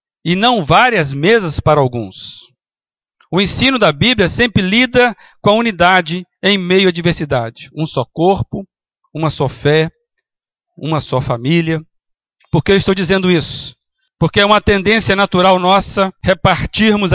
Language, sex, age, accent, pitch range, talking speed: Portuguese, male, 60-79, Brazilian, 165-205 Hz, 145 wpm